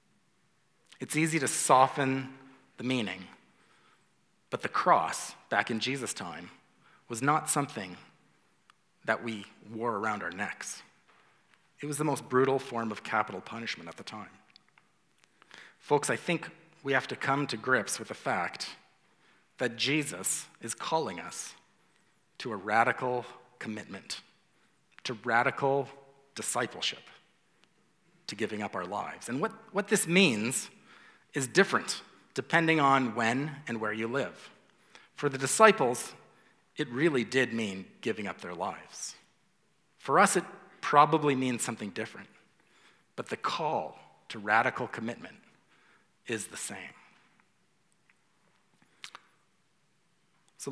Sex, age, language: male, 40-59, English